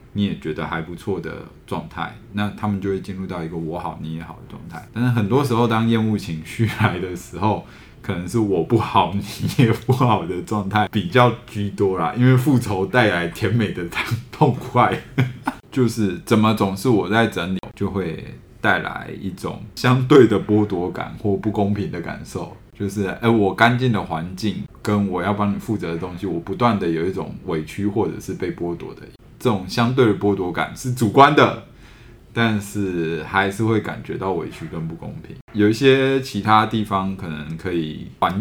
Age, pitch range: 20-39, 85-110 Hz